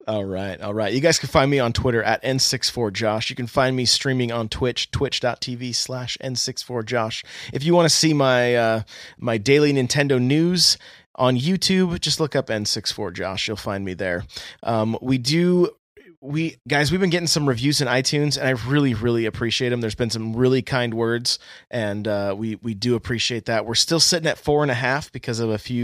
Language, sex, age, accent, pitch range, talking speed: English, male, 30-49, American, 110-140 Hz, 200 wpm